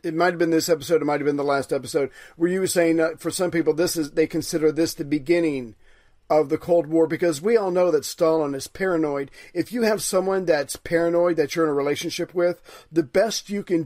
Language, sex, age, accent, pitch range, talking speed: English, male, 40-59, American, 155-175 Hz, 245 wpm